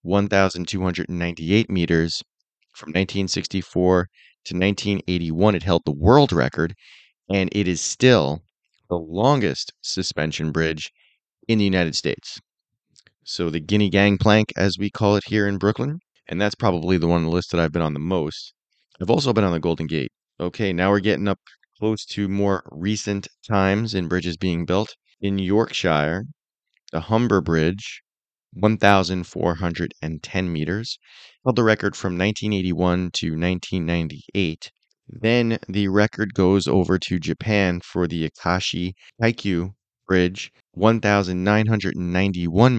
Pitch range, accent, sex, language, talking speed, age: 85-105 Hz, American, male, English, 135 wpm, 30-49